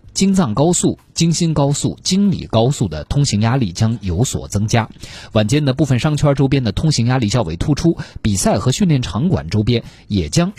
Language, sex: Chinese, male